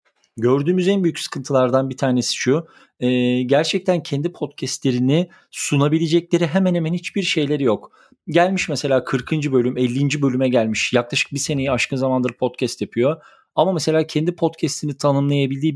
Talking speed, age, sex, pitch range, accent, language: 135 wpm, 40-59, male, 125-160 Hz, native, Turkish